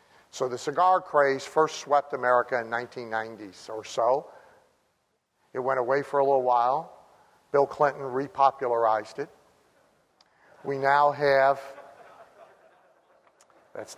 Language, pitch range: English, 125-145 Hz